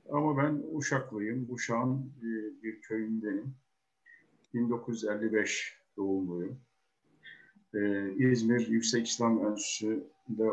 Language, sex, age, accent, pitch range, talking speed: Turkish, male, 50-69, native, 105-125 Hz, 80 wpm